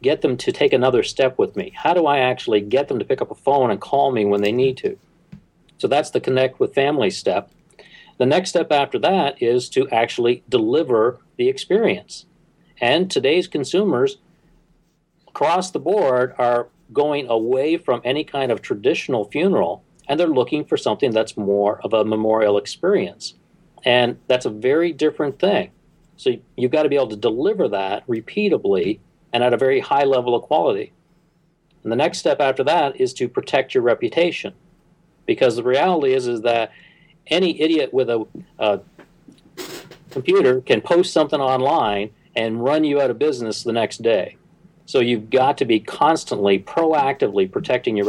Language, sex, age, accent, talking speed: English, male, 50-69, American, 175 wpm